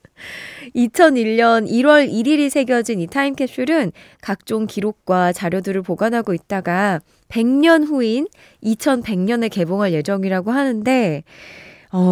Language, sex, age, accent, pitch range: Korean, female, 20-39, native, 175-255 Hz